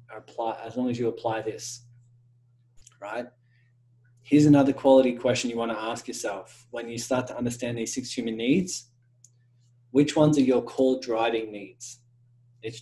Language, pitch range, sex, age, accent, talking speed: English, 120-130 Hz, male, 20-39, Australian, 160 wpm